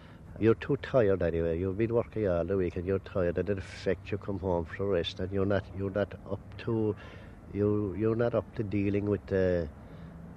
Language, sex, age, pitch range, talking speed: English, male, 60-79, 85-100 Hz, 220 wpm